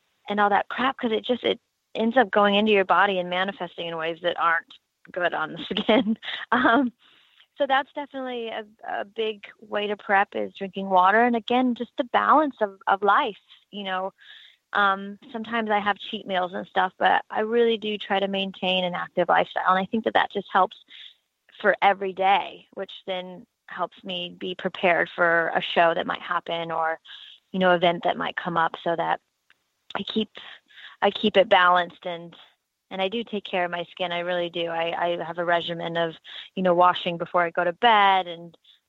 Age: 20-39